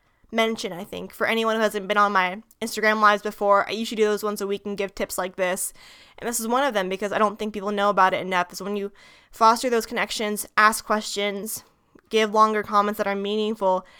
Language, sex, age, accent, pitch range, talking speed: English, female, 10-29, American, 200-230 Hz, 230 wpm